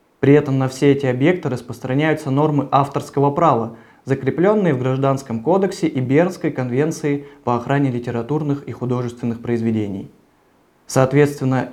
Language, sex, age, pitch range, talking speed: Russian, male, 20-39, 125-150 Hz, 125 wpm